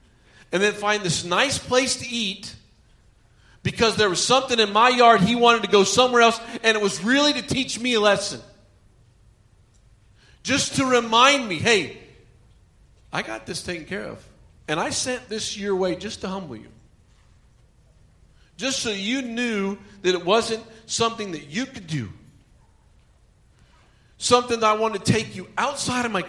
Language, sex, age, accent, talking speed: English, male, 40-59, American, 165 wpm